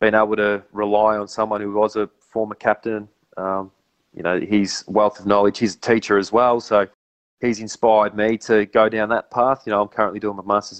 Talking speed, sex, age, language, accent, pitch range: 215 wpm, male, 20-39, English, Australian, 100-115 Hz